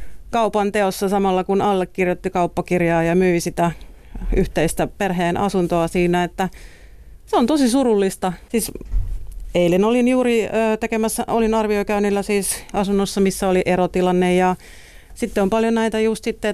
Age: 40-59